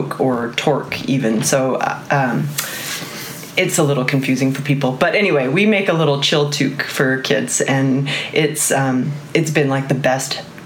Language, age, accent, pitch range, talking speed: English, 30-49, American, 135-165 Hz, 170 wpm